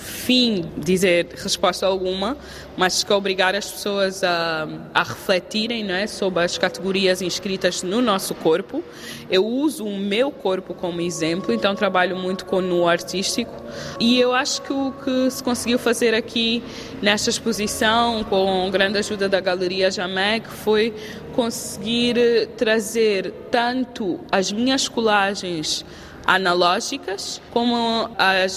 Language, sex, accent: Portuguese, female, Brazilian